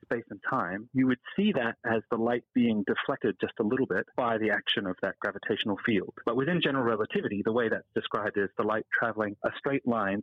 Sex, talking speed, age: male, 225 wpm, 30-49